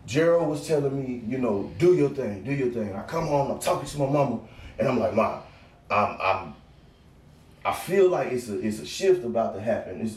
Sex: male